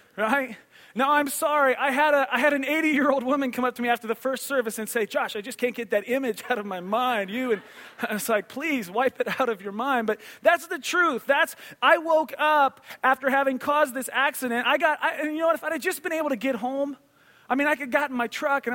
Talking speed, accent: 270 wpm, American